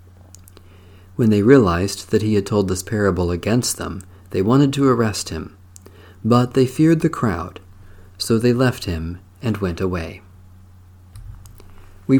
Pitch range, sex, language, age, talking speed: 90-130 Hz, male, English, 40-59, 145 wpm